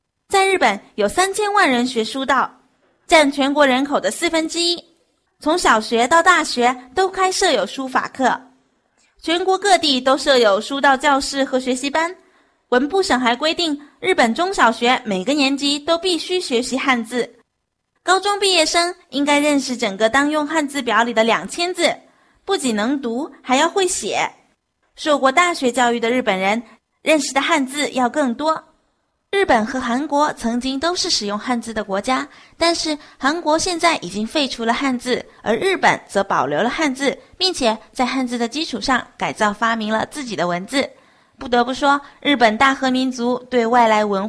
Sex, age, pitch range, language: female, 20-39, 240-320 Hz, Chinese